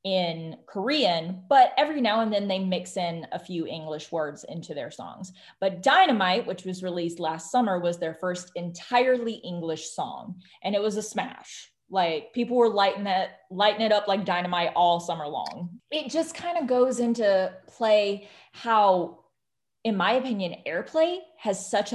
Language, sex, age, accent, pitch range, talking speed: English, female, 20-39, American, 175-225 Hz, 165 wpm